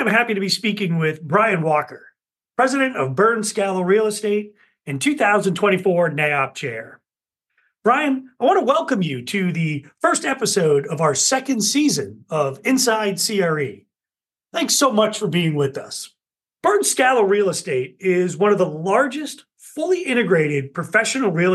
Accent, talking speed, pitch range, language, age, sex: American, 155 wpm, 175-230 Hz, English, 40-59, male